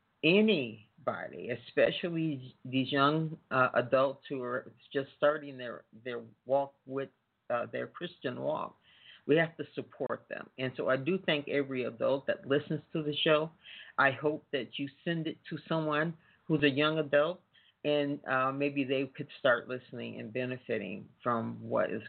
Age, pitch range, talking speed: 40-59, 125-160 Hz, 160 wpm